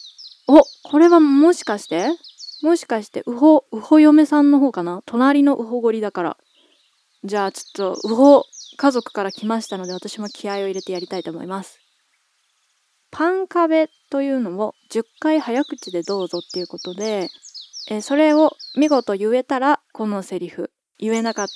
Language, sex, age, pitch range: Japanese, female, 20-39, 195-300 Hz